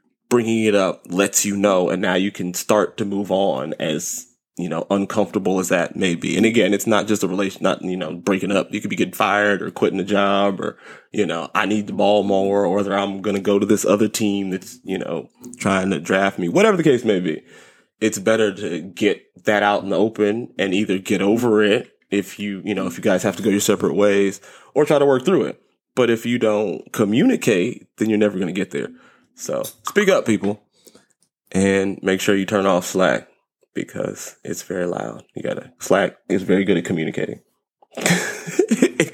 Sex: male